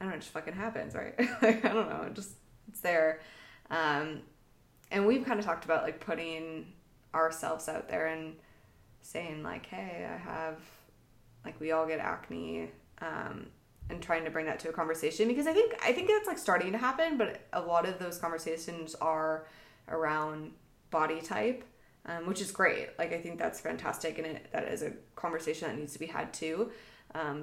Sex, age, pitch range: female, 20-39, 160-185 Hz